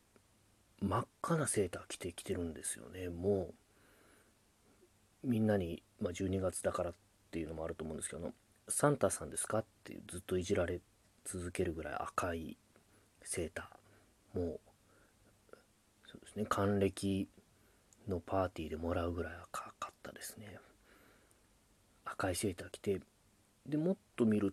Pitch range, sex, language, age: 95-110 Hz, male, Japanese, 30-49